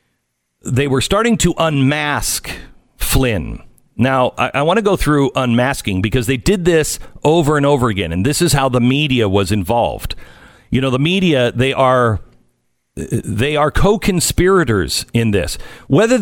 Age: 50-69